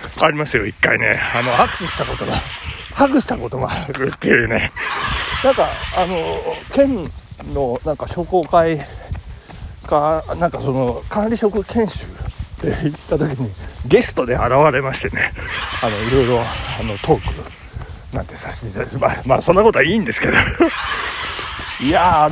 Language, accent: Japanese, native